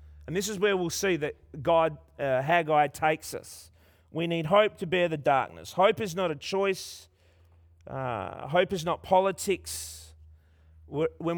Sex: male